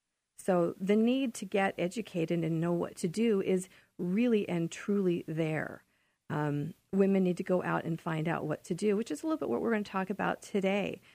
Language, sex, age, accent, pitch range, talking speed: English, female, 40-59, American, 170-205 Hz, 215 wpm